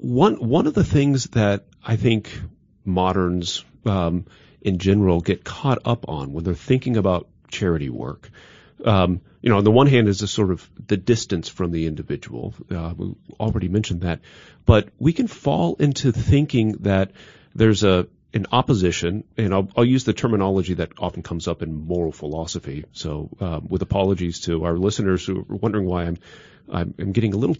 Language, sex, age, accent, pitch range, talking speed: English, male, 40-59, American, 90-115 Hz, 180 wpm